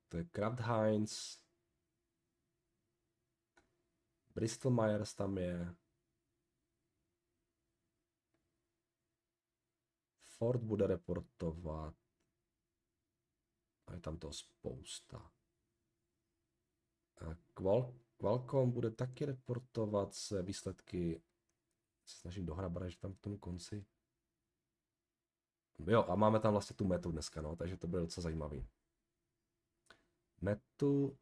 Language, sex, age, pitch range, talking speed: Czech, male, 40-59, 90-115 Hz, 90 wpm